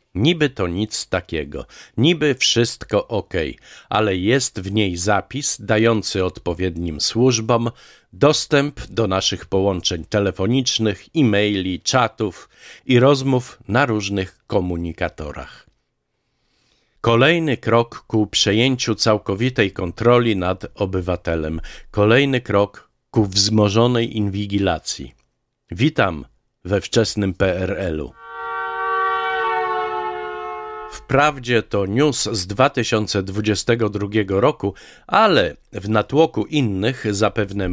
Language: Polish